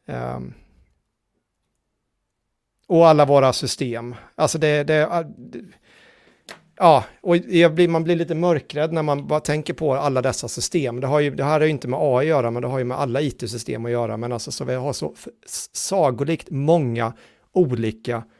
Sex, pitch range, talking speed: male, 130-165 Hz, 185 wpm